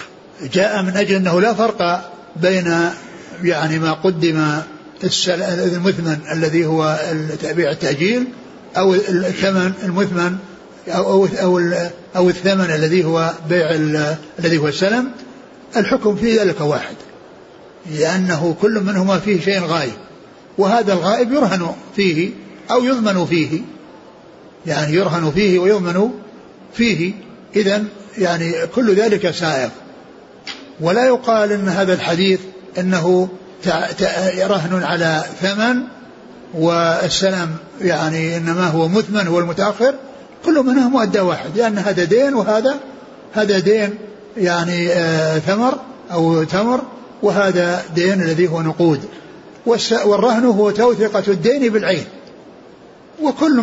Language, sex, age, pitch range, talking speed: Arabic, male, 60-79, 170-210 Hz, 105 wpm